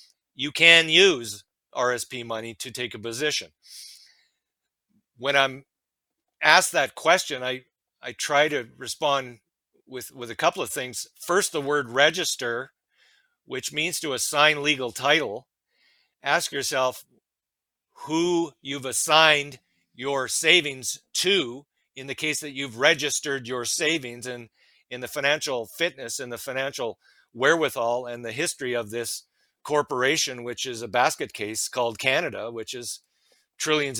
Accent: American